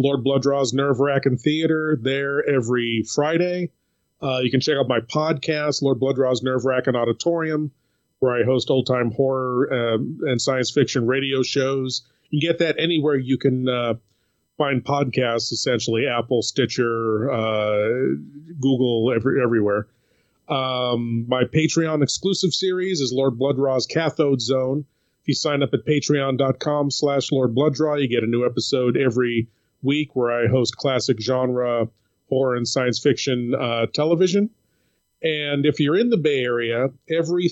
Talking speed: 145 wpm